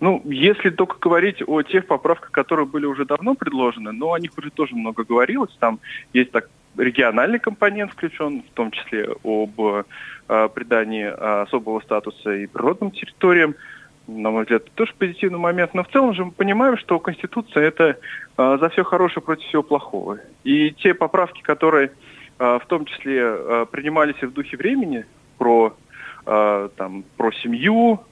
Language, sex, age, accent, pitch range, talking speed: Russian, male, 20-39, native, 115-175 Hz, 165 wpm